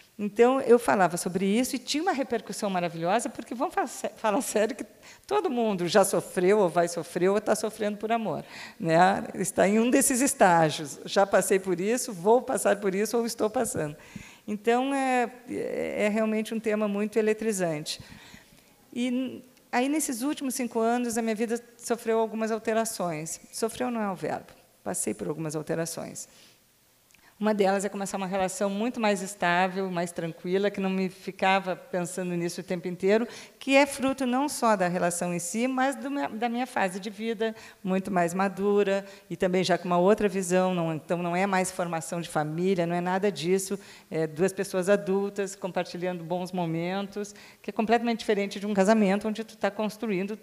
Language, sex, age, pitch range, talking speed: Portuguese, female, 50-69, 180-230 Hz, 175 wpm